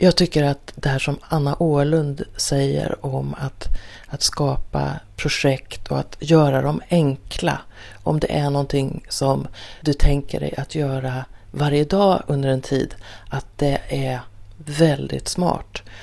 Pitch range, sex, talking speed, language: 105-160 Hz, female, 145 wpm, Swedish